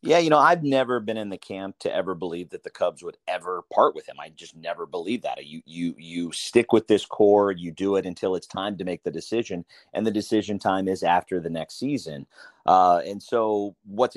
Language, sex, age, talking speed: English, male, 30-49, 235 wpm